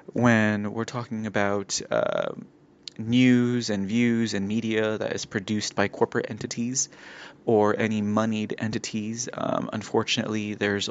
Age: 20-39